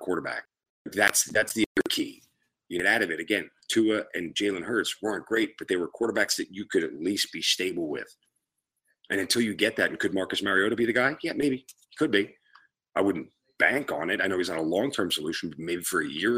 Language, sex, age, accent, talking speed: English, male, 40-59, American, 230 wpm